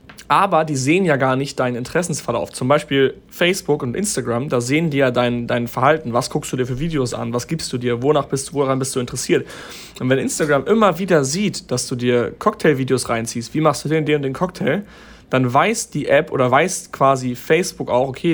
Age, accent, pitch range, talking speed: 30-49, German, 130-160 Hz, 220 wpm